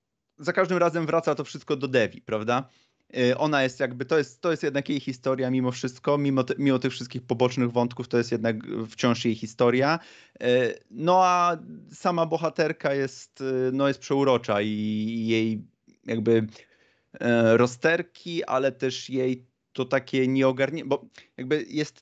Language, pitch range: Polish, 120-140 Hz